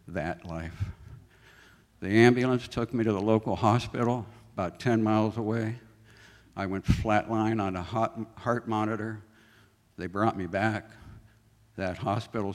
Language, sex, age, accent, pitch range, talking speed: English, male, 60-79, American, 90-110 Hz, 130 wpm